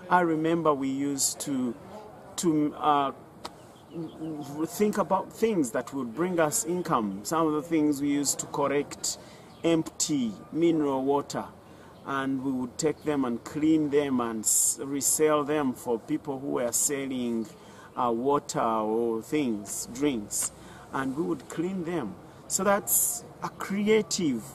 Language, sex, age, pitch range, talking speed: English, male, 40-59, 140-175 Hz, 135 wpm